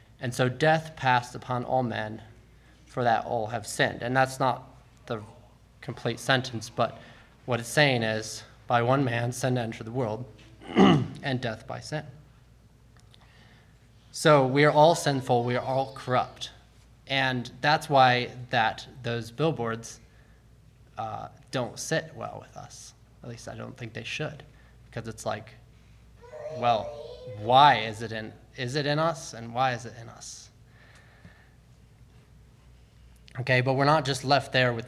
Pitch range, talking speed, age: 115-140 Hz, 150 wpm, 20-39